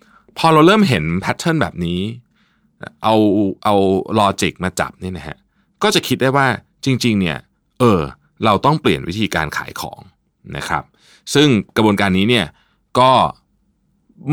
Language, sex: Thai, male